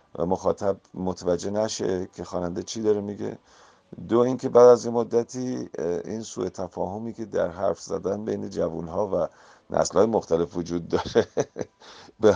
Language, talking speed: Persian, 155 wpm